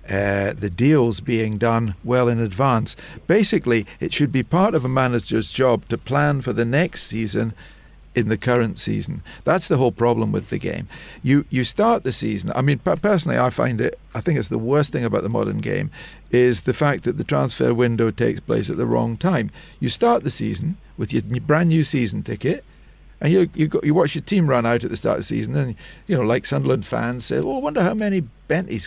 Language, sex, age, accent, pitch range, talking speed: English, male, 50-69, British, 115-155 Hz, 220 wpm